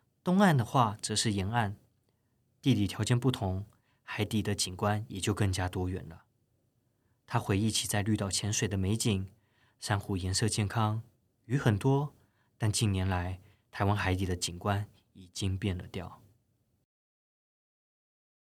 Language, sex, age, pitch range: Chinese, male, 20-39, 105-125 Hz